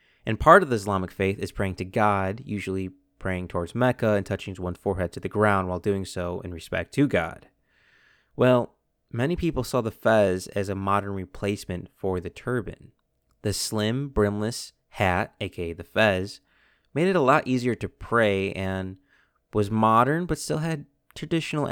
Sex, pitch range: male, 95-120 Hz